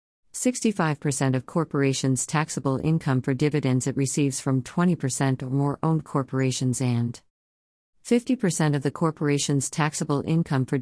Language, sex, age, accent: English, female, 50-69, American